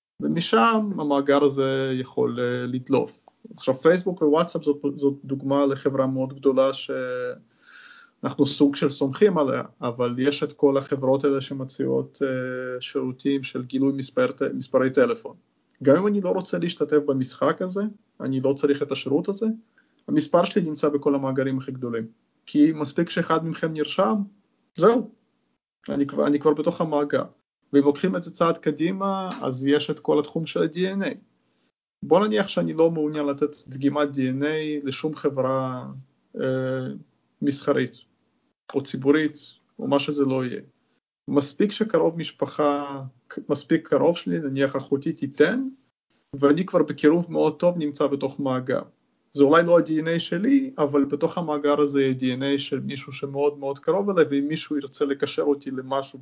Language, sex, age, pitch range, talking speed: Hebrew, male, 30-49, 135-165 Hz, 150 wpm